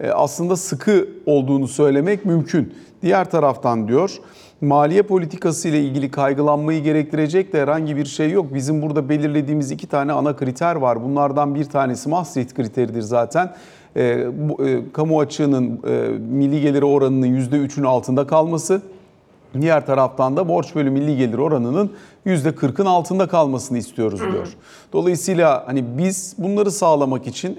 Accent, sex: native, male